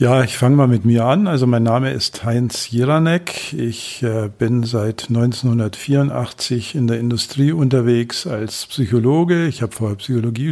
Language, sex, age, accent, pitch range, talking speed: German, male, 50-69, German, 115-130 Hz, 155 wpm